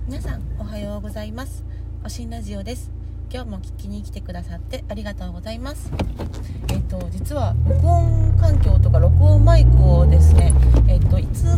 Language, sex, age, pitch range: Japanese, female, 30-49, 70-105 Hz